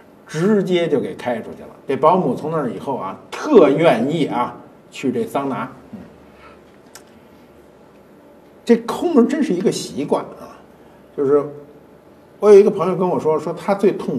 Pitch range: 130-220 Hz